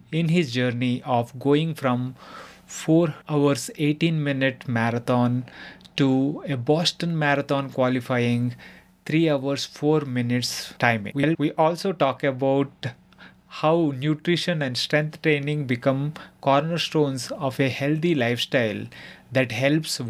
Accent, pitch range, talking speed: Indian, 125-155 Hz, 115 wpm